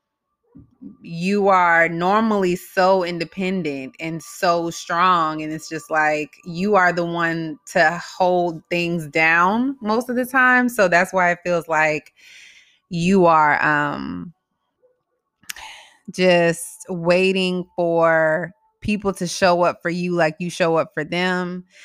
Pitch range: 160-185 Hz